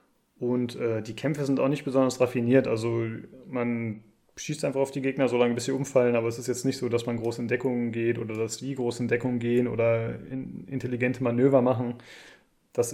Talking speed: 200 wpm